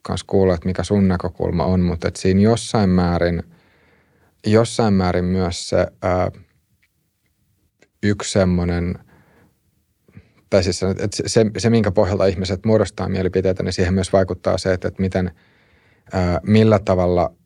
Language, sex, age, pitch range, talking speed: Finnish, male, 30-49, 90-100 Hz, 135 wpm